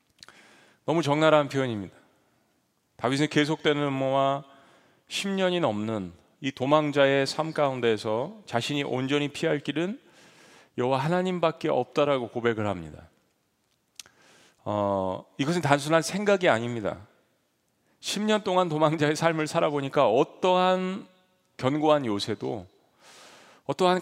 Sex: male